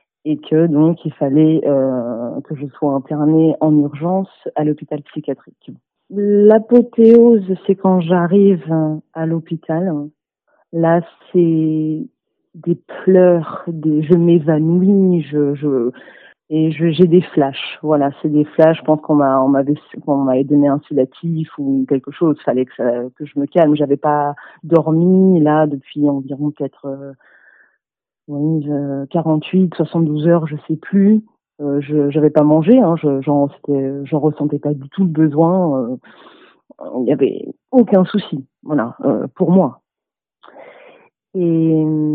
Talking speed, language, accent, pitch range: 145 wpm, French, French, 150-185 Hz